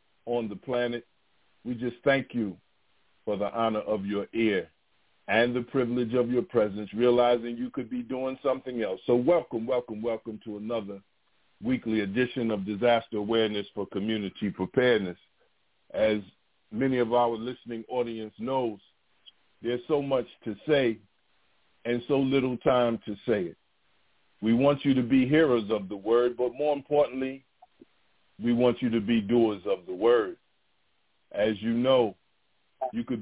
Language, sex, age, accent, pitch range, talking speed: English, male, 50-69, American, 110-130 Hz, 155 wpm